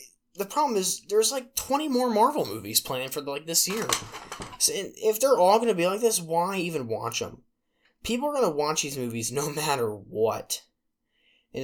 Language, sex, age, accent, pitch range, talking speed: English, male, 10-29, American, 110-145 Hz, 185 wpm